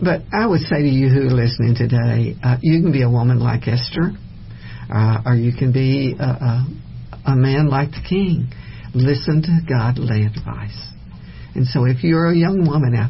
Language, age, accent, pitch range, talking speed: English, 60-79, American, 120-150 Hz, 190 wpm